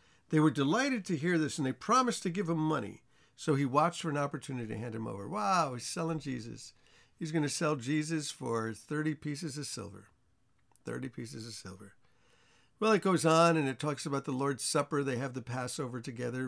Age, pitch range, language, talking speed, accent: 50-69, 125-155 Hz, English, 210 wpm, American